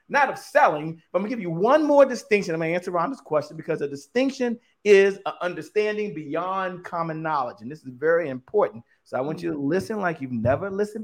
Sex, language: male, English